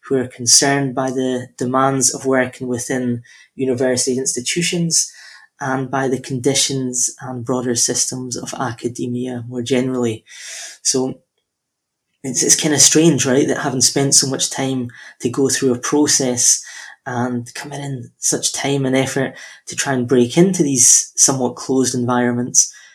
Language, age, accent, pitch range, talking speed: English, 20-39, British, 125-140 Hz, 145 wpm